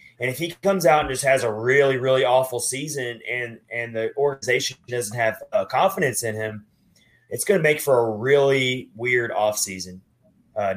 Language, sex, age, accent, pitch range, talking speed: English, male, 30-49, American, 115-135 Hz, 185 wpm